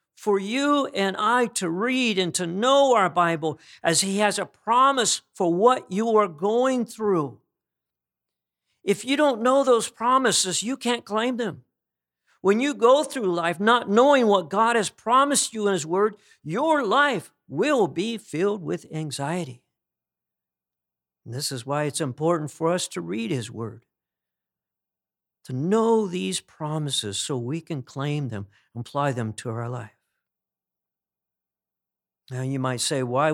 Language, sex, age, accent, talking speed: English, male, 50-69, American, 155 wpm